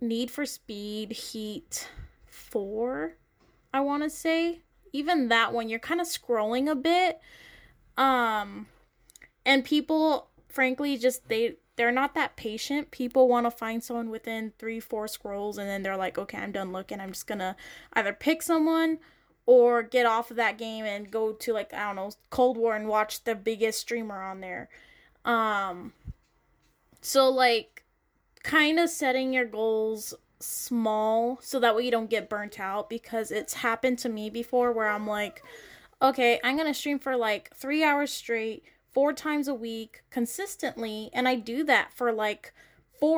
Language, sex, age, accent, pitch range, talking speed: English, female, 10-29, American, 220-275 Hz, 170 wpm